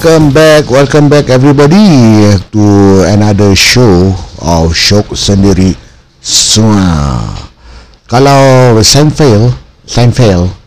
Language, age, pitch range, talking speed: Malay, 50-69, 90-135 Hz, 100 wpm